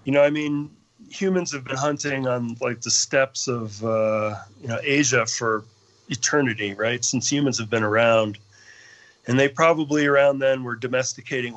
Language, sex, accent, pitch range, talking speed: English, male, American, 115-140 Hz, 165 wpm